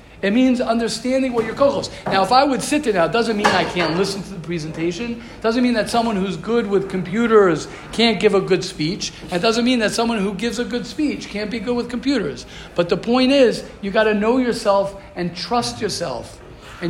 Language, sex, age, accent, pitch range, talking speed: English, male, 50-69, American, 180-235 Hz, 225 wpm